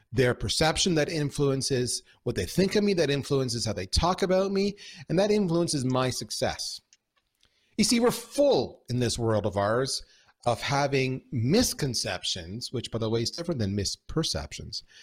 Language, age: English, 40-59